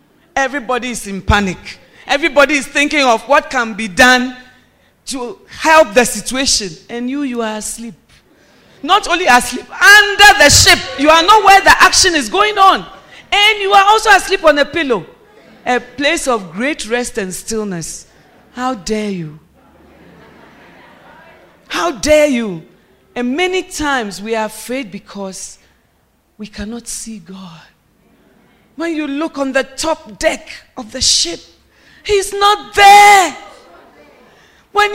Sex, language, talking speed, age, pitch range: female, English, 140 wpm, 40-59, 225-355 Hz